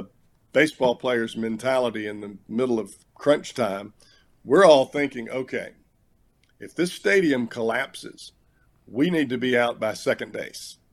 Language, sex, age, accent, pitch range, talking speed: English, male, 50-69, American, 115-140 Hz, 135 wpm